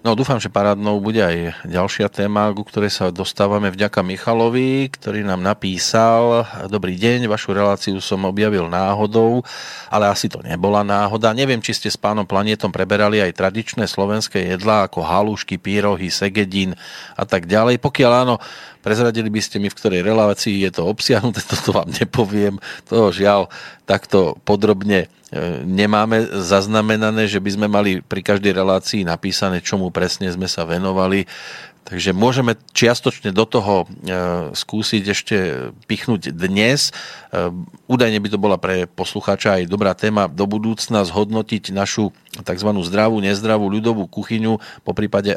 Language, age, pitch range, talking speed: Slovak, 40-59, 100-115 Hz, 145 wpm